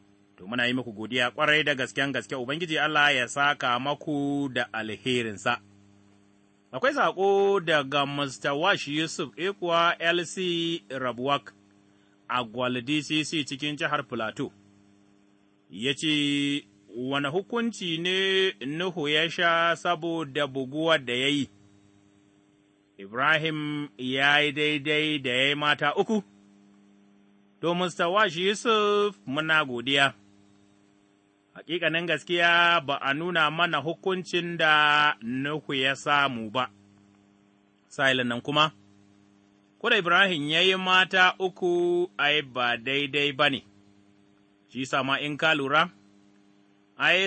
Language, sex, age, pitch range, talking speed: English, male, 30-49, 110-170 Hz, 90 wpm